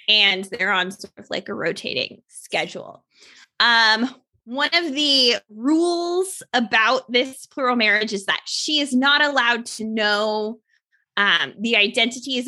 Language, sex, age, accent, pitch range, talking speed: English, female, 20-39, American, 200-270 Hz, 140 wpm